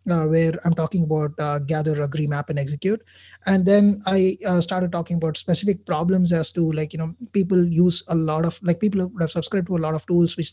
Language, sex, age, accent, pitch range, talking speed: English, male, 20-39, Indian, 155-185 Hz, 230 wpm